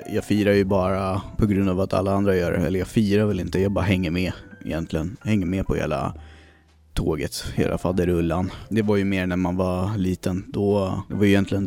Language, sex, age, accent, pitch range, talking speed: Swedish, male, 20-39, native, 90-105 Hz, 220 wpm